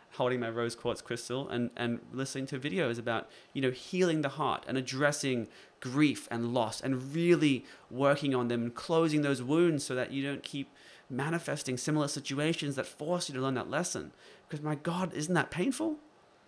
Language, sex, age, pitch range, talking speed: English, male, 20-39, 115-135 Hz, 185 wpm